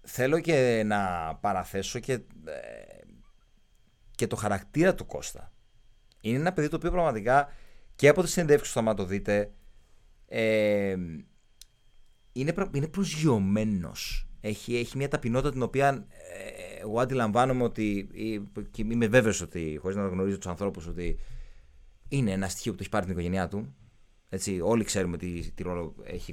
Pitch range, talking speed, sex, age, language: 95-140 Hz, 155 wpm, male, 30-49, Greek